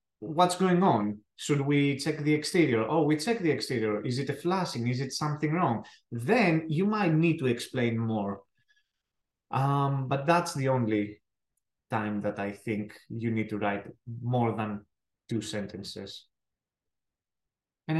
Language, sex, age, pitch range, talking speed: English, male, 20-39, 120-160 Hz, 155 wpm